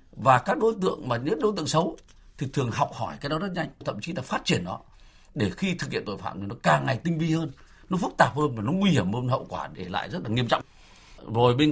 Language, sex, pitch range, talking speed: Vietnamese, male, 125-170 Hz, 280 wpm